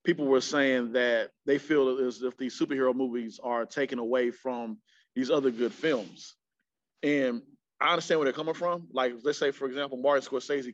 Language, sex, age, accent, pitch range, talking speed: English, male, 30-49, American, 120-145 Hz, 185 wpm